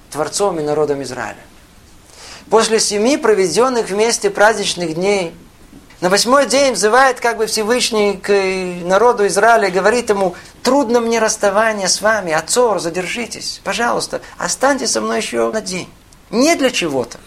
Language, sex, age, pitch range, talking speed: Russian, male, 50-69, 170-240 Hz, 135 wpm